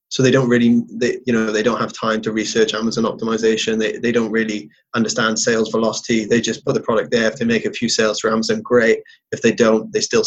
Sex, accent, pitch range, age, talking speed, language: male, British, 110-140 Hz, 20-39, 245 wpm, English